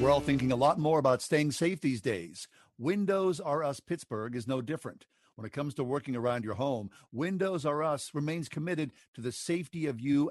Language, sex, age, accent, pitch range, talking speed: English, male, 50-69, American, 125-165 Hz, 210 wpm